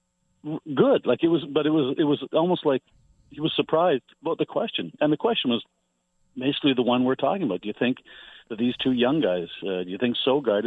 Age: 50-69